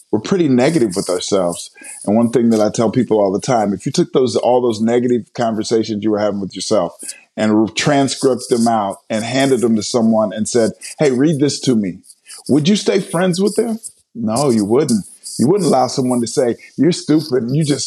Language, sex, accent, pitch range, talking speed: English, male, American, 115-150 Hz, 220 wpm